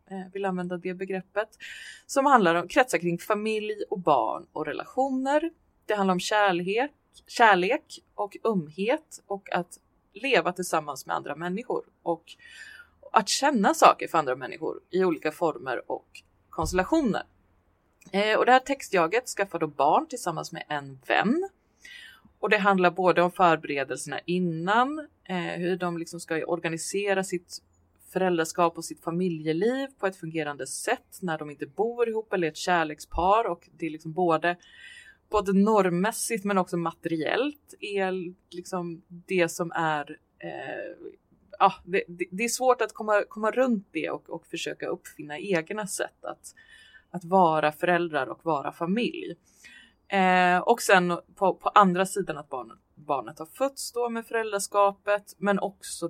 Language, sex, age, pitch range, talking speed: English, female, 30-49, 165-215 Hz, 145 wpm